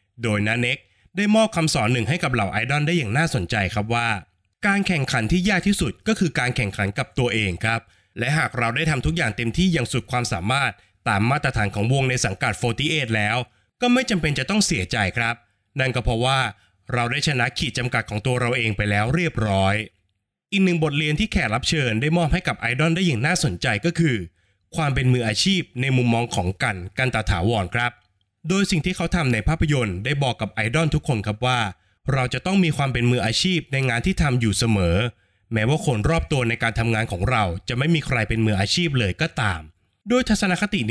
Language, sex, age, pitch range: Thai, male, 20-39, 110-155 Hz